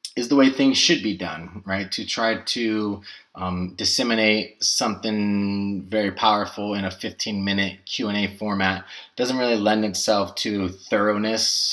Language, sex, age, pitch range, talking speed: English, male, 20-39, 95-110 Hz, 155 wpm